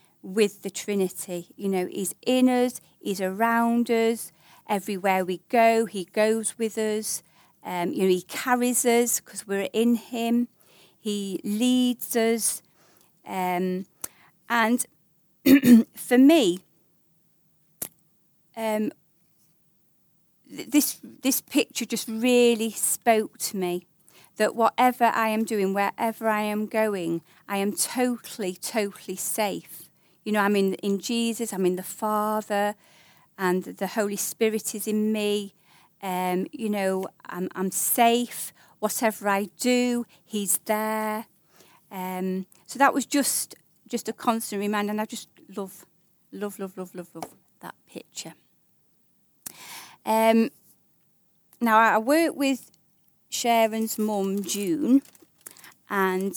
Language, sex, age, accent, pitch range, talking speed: English, female, 40-59, British, 185-230 Hz, 125 wpm